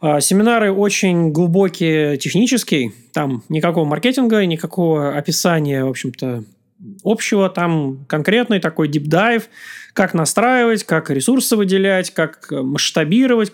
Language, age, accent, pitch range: Russian, 30-49, native, 150-215 Hz